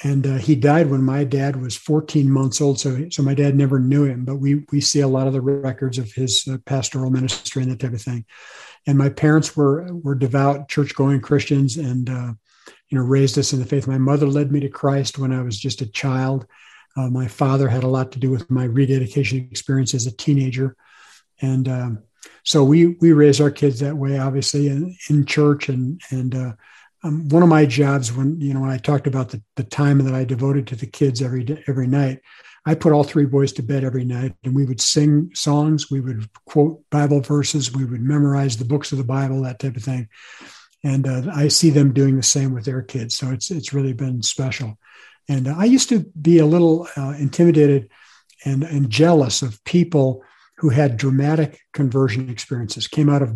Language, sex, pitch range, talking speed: English, male, 130-145 Hz, 220 wpm